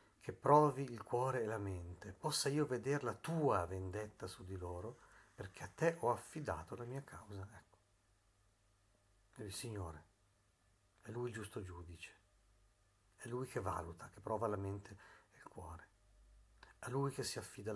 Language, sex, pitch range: Italian, male, 100-120 Hz